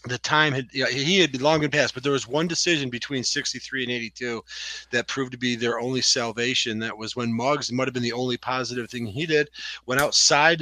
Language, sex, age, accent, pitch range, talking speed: English, male, 40-59, American, 120-150 Hz, 230 wpm